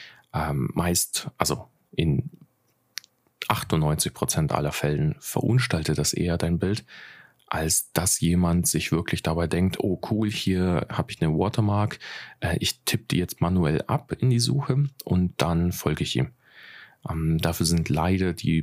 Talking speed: 150 wpm